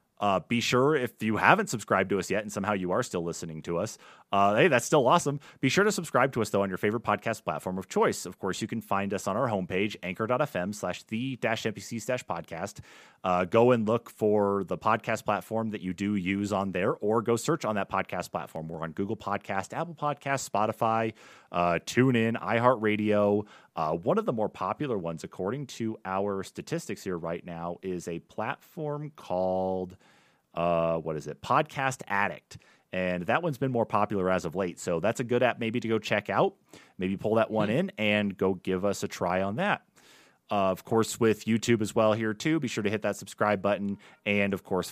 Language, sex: English, male